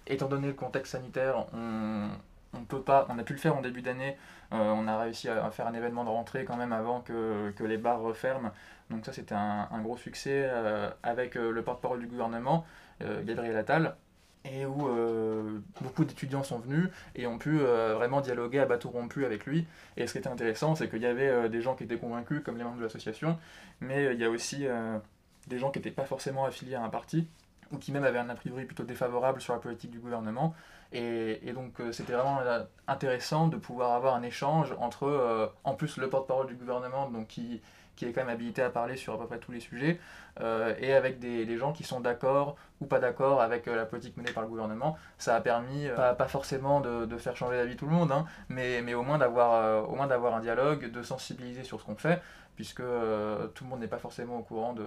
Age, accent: 20-39, French